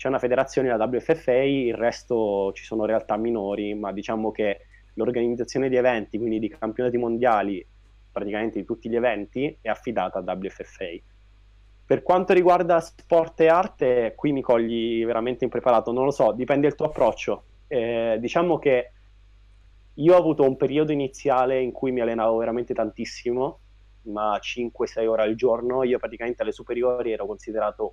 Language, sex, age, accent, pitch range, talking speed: Italian, male, 20-39, native, 105-135 Hz, 160 wpm